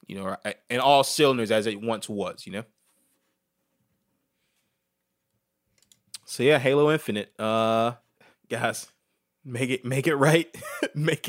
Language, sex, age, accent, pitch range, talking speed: English, male, 20-39, American, 110-145 Hz, 120 wpm